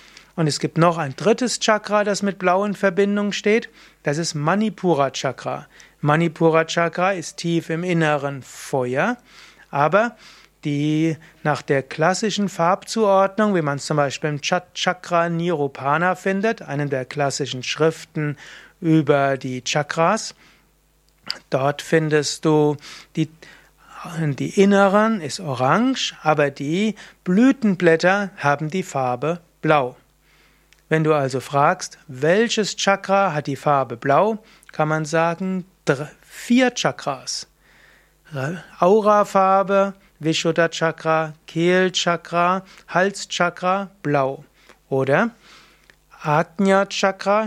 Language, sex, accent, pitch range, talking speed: German, male, German, 150-195 Hz, 105 wpm